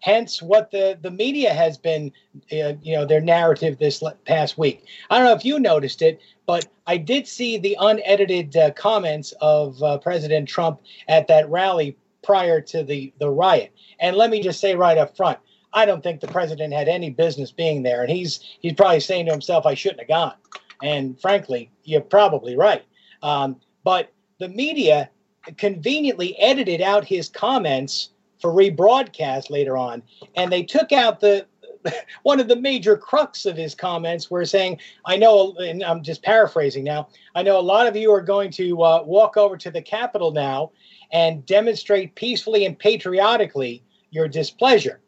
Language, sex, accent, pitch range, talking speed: English, male, American, 155-210 Hz, 180 wpm